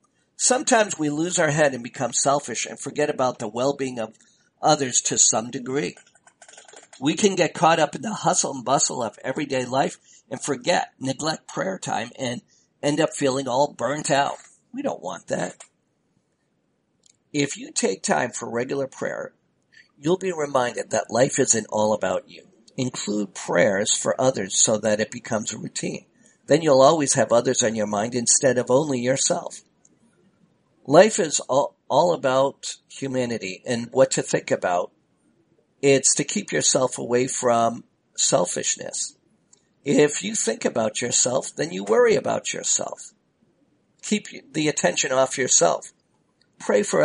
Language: English